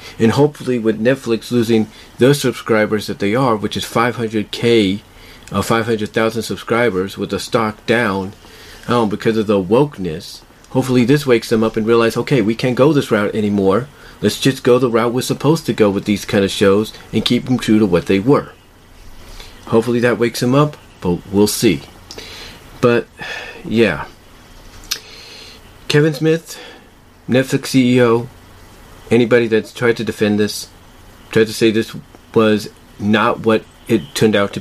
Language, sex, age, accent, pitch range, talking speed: English, male, 40-59, American, 100-125 Hz, 160 wpm